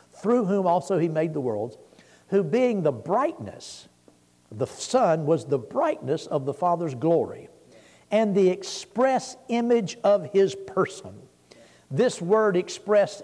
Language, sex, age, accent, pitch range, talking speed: English, male, 60-79, American, 145-205 Hz, 135 wpm